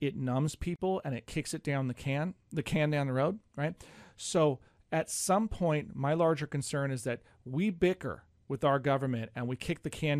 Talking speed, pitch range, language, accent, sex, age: 205 wpm, 120-150 Hz, English, American, male, 40-59